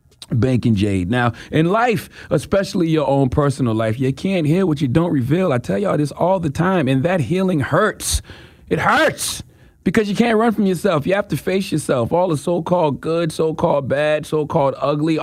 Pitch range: 110-170 Hz